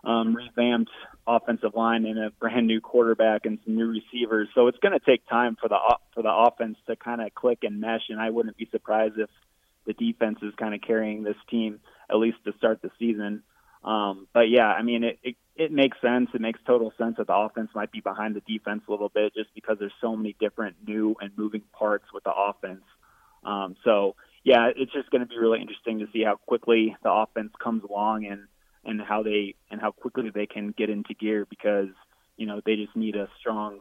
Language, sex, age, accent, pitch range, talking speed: English, male, 20-39, American, 105-120 Hz, 225 wpm